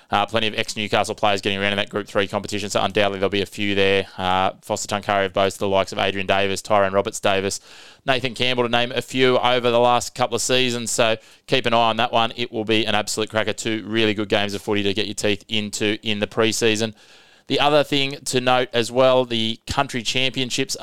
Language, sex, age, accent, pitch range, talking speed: English, male, 20-39, Australian, 105-120 Hz, 230 wpm